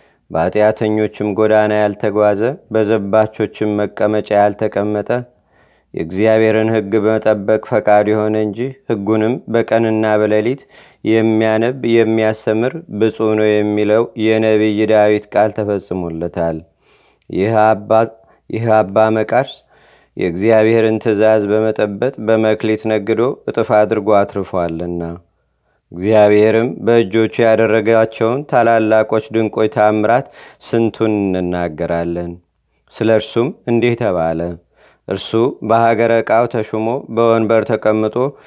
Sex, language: male, Amharic